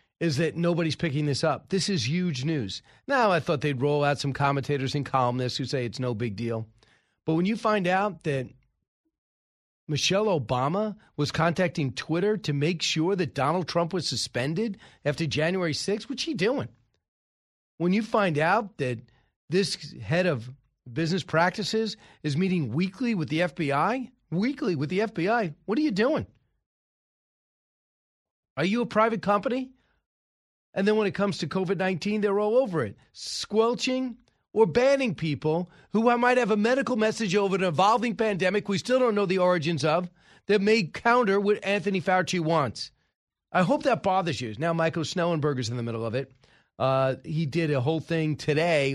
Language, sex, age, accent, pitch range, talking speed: English, male, 40-59, American, 140-200 Hz, 170 wpm